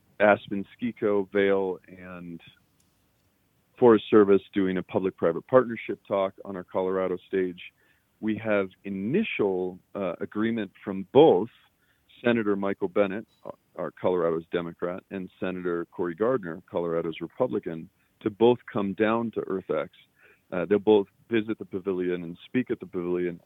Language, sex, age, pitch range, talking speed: English, male, 40-59, 90-110 Hz, 130 wpm